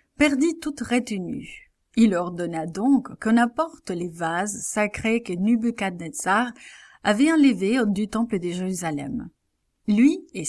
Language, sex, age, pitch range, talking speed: English, female, 30-49, 180-250 Hz, 120 wpm